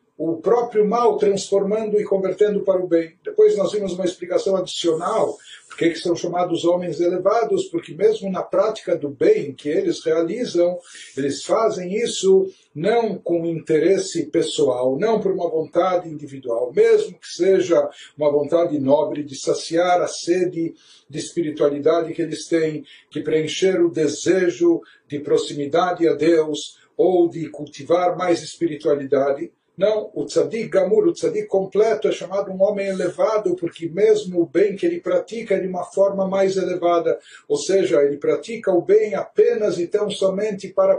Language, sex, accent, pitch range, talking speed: Portuguese, male, Brazilian, 170-215 Hz, 155 wpm